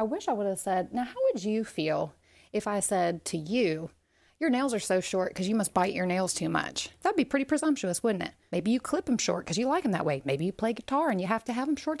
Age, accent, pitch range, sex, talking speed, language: 30-49, American, 175-260 Hz, female, 290 wpm, English